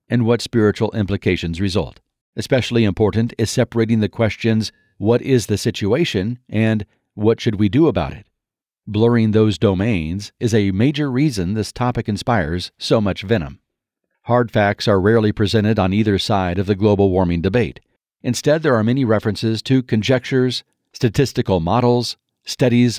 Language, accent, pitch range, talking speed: English, American, 100-125 Hz, 150 wpm